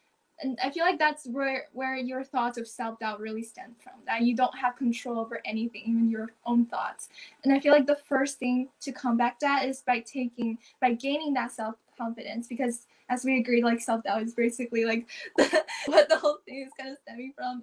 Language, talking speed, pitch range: English, 220 wpm, 235-285 Hz